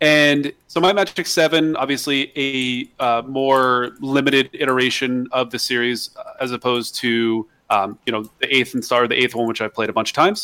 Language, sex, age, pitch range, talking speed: English, male, 30-49, 120-150 Hz, 200 wpm